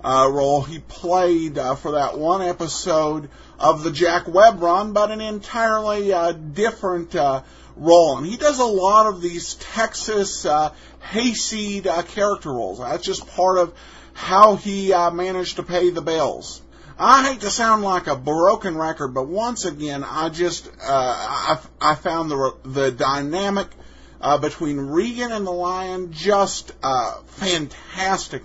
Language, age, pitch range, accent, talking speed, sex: English, 50-69, 145-195 Hz, American, 160 wpm, male